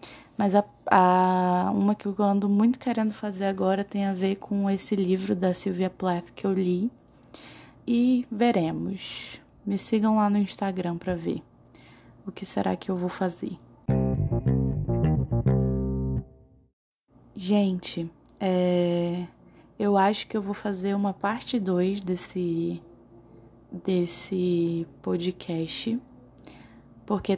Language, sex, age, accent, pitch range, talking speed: Portuguese, female, 20-39, Brazilian, 180-205 Hz, 120 wpm